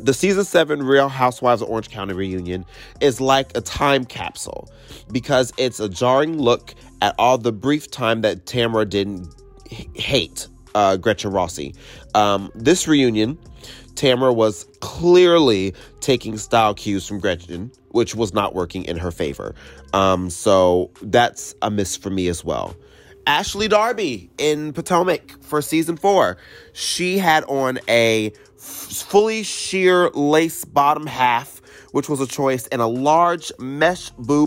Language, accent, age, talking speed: English, American, 30-49, 150 wpm